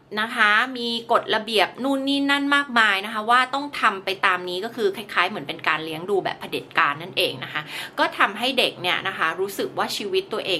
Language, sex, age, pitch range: Thai, female, 20-39, 180-240 Hz